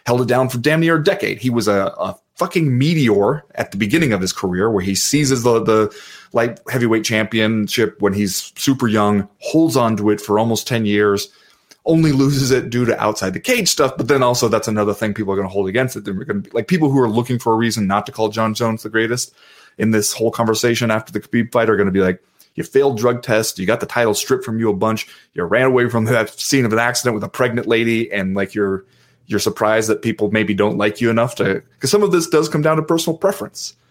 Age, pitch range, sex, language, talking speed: 30-49, 105-130 Hz, male, English, 255 wpm